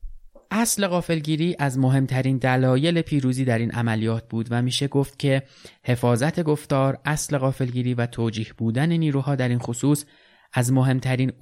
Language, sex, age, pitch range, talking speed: Persian, male, 20-39, 115-135 Hz, 140 wpm